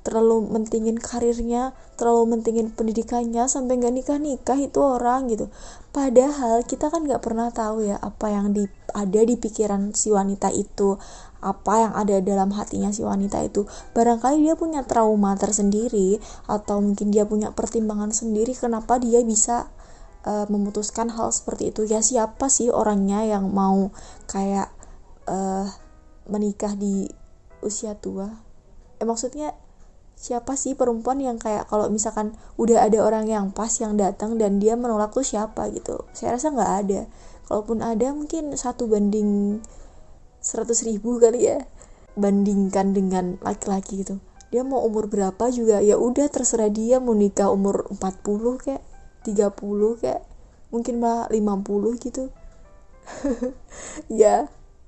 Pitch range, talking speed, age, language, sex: 205-240 Hz, 135 wpm, 20-39, Indonesian, female